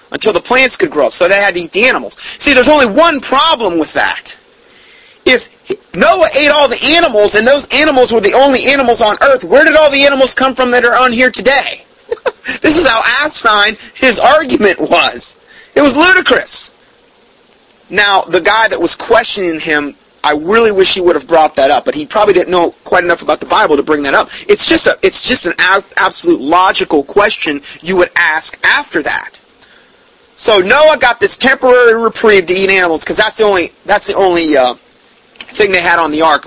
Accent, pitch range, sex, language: American, 175-275 Hz, male, English